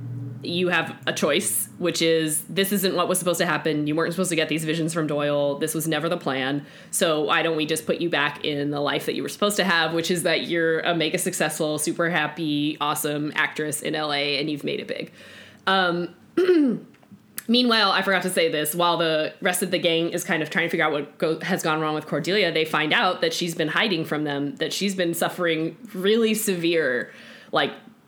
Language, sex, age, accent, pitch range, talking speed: English, female, 20-39, American, 155-195 Hz, 220 wpm